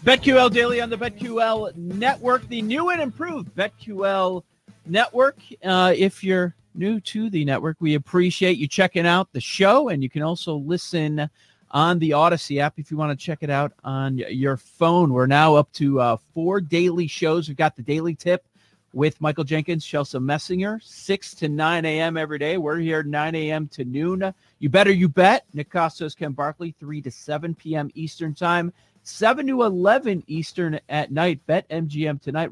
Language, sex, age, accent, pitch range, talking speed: English, male, 40-59, American, 150-185 Hz, 180 wpm